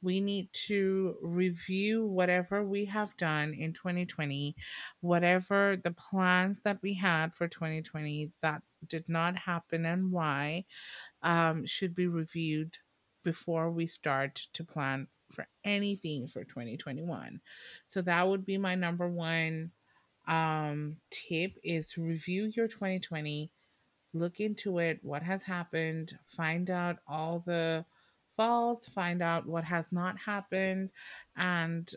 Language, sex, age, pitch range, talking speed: English, female, 30-49, 165-205 Hz, 125 wpm